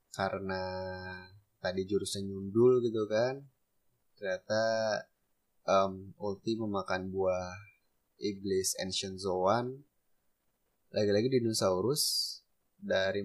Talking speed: 75 wpm